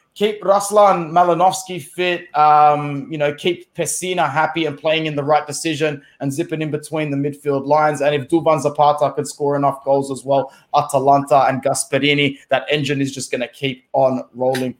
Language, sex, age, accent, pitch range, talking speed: English, male, 20-39, Australian, 145-190 Hz, 185 wpm